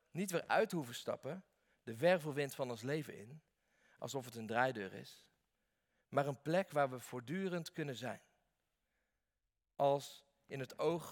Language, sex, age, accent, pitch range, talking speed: Dutch, male, 40-59, Dutch, 125-175 Hz, 150 wpm